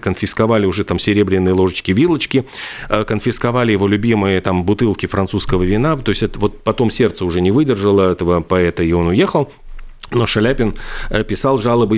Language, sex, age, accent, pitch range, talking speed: Russian, male, 40-59, native, 95-115 Hz, 155 wpm